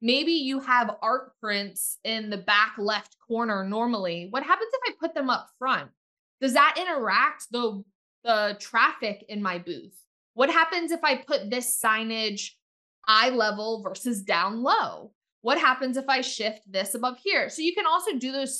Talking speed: 175 wpm